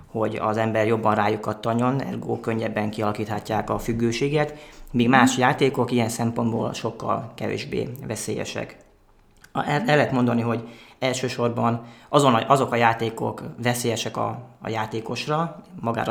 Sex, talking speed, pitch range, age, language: male, 125 wpm, 115-130 Hz, 30-49, Hungarian